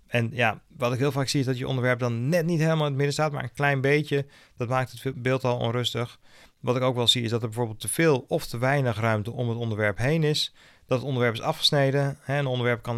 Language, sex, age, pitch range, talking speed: Dutch, male, 40-59, 115-140 Hz, 265 wpm